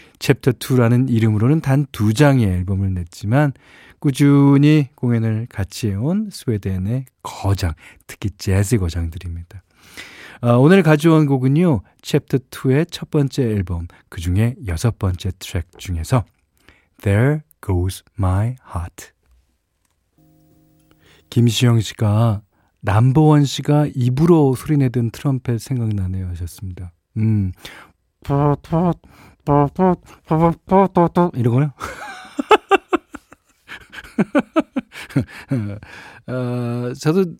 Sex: male